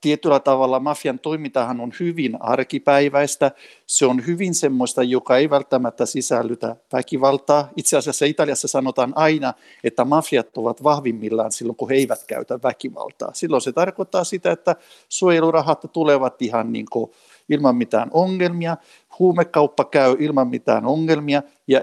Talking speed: 135 wpm